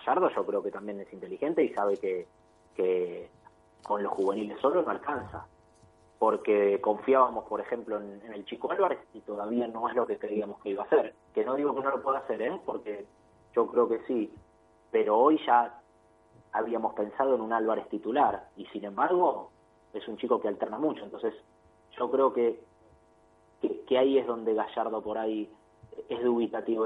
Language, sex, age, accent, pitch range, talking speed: Spanish, male, 20-39, Argentinian, 110-145 Hz, 185 wpm